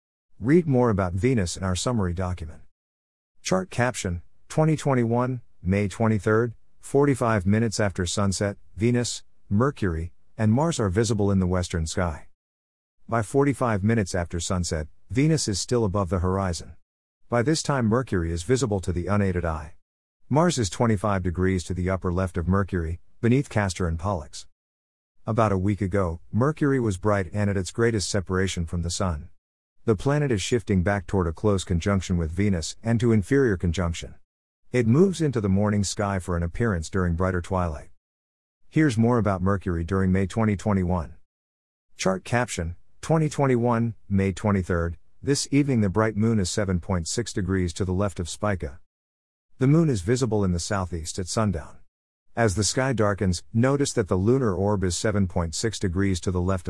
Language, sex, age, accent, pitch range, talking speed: English, male, 50-69, American, 85-115 Hz, 160 wpm